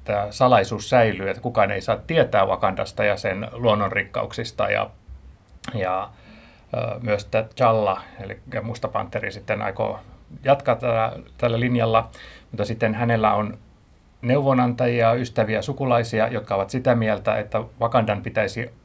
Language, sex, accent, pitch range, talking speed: Finnish, male, native, 100-120 Hz, 125 wpm